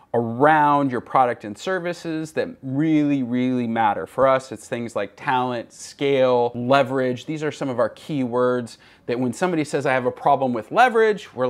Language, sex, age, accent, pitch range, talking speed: English, male, 30-49, American, 120-150 Hz, 185 wpm